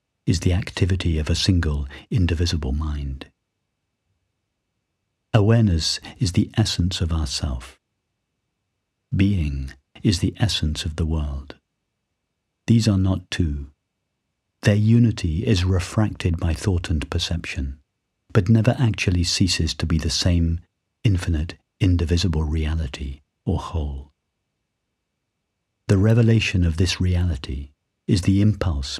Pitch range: 80-100 Hz